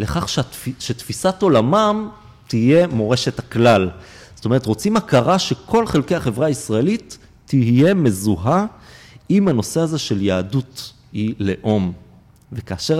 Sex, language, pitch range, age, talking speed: male, Hebrew, 110-165 Hz, 40-59, 110 wpm